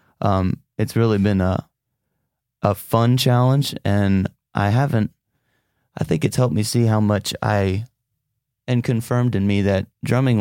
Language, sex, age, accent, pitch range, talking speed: English, male, 30-49, American, 100-115 Hz, 150 wpm